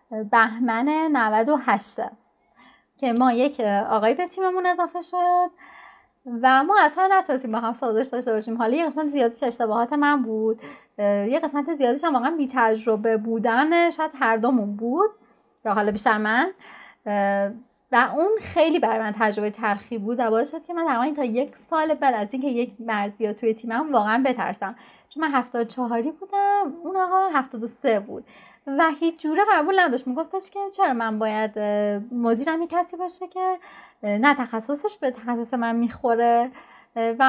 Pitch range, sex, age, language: 225-320 Hz, female, 30-49, Persian